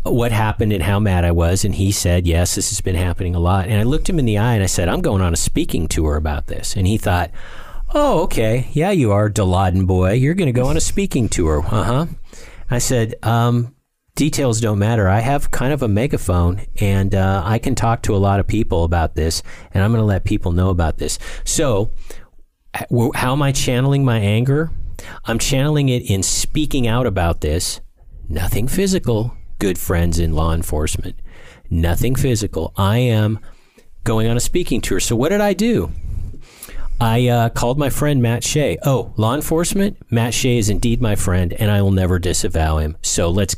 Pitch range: 90-120 Hz